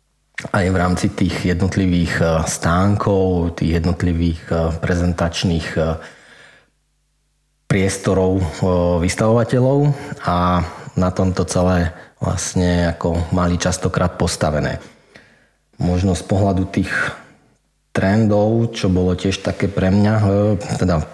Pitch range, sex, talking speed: 85-95 Hz, male, 90 wpm